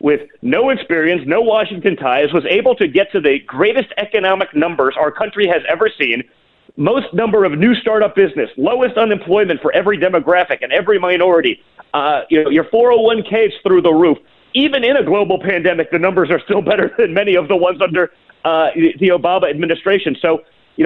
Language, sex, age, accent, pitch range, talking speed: English, male, 40-59, American, 180-260 Hz, 185 wpm